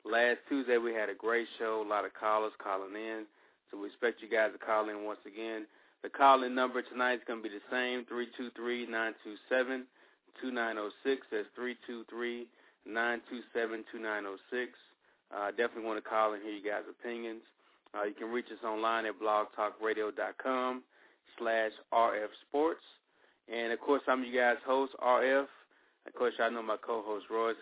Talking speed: 150 wpm